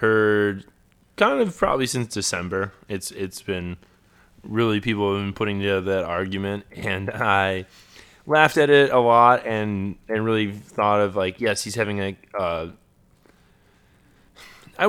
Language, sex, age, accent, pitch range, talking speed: English, male, 20-39, American, 95-110 Hz, 145 wpm